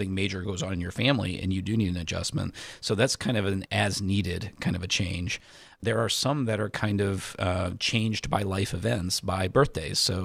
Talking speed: 220 wpm